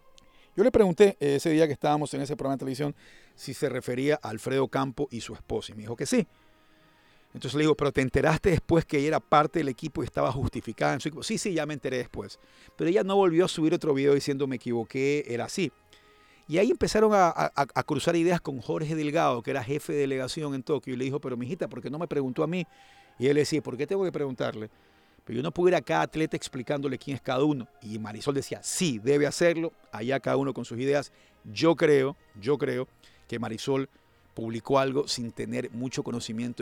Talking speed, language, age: 235 wpm, Spanish, 50-69